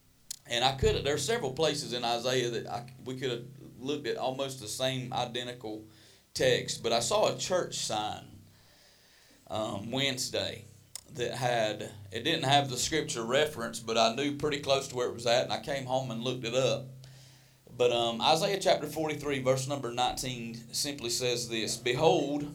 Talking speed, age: 175 wpm, 40-59